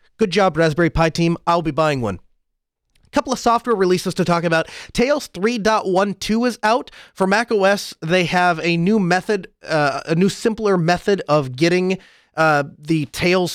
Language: English